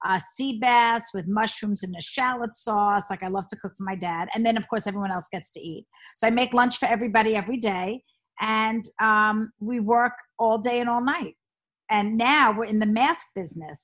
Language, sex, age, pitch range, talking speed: English, female, 40-59, 195-235 Hz, 215 wpm